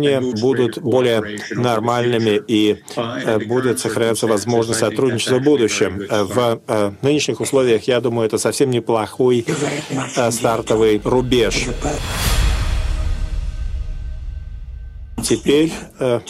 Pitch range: 105-130 Hz